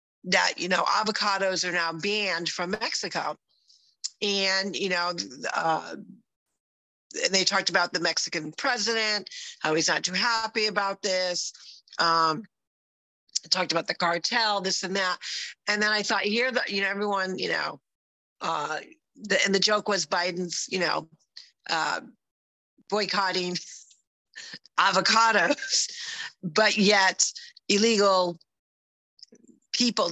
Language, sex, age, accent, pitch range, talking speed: English, female, 40-59, American, 175-220 Hz, 120 wpm